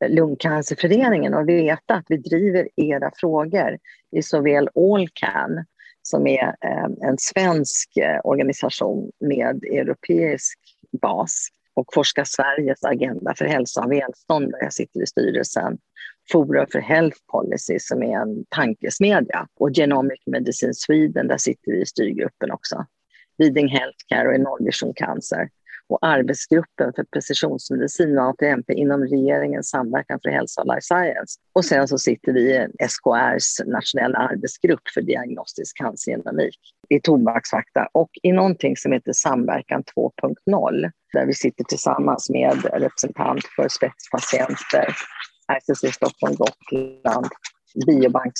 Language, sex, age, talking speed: Swedish, female, 50-69, 130 wpm